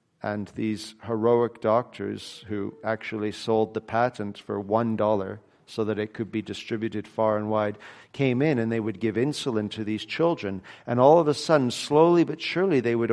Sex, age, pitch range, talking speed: male, 40-59, 115-170 Hz, 185 wpm